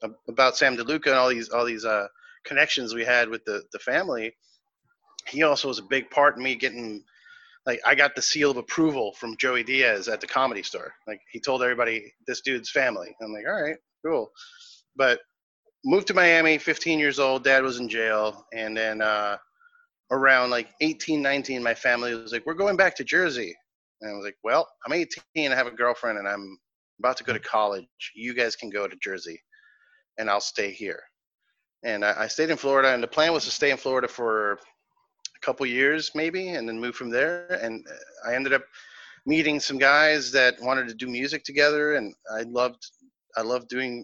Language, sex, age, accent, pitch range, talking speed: English, male, 30-49, American, 115-155 Hz, 200 wpm